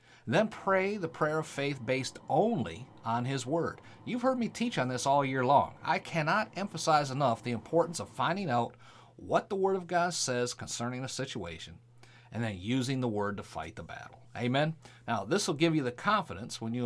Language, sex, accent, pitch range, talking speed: English, male, American, 115-155 Hz, 205 wpm